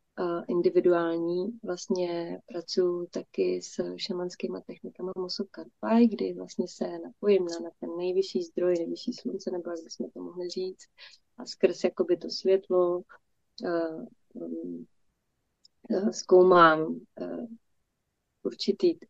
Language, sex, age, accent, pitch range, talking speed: Czech, female, 30-49, native, 160-185 Hz, 100 wpm